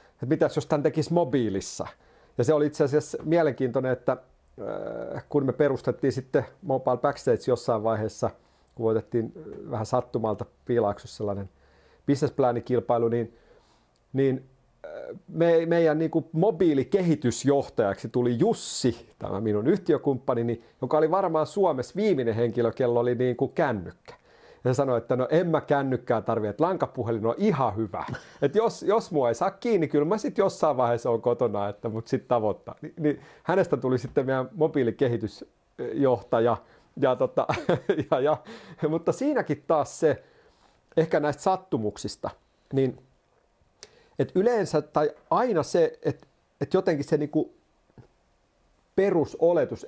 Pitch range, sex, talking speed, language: 120-155 Hz, male, 135 wpm, Finnish